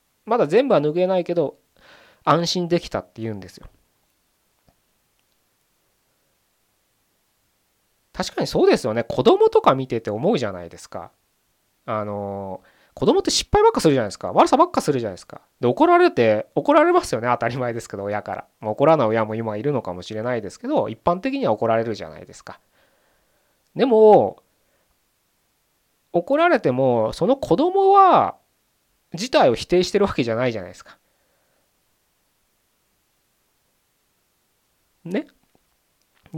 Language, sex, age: Japanese, male, 20-39